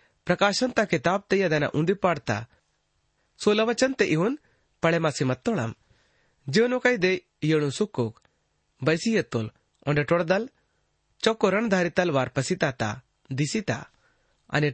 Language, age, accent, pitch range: Hindi, 30-49, native, 135-205 Hz